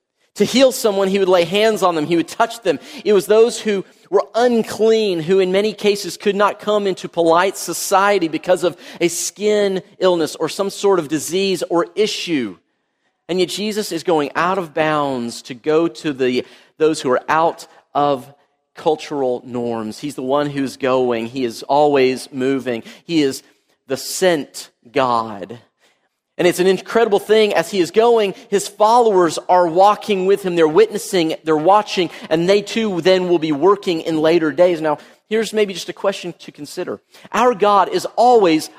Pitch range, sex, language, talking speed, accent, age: 160-205 Hz, male, English, 180 wpm, American, 40-59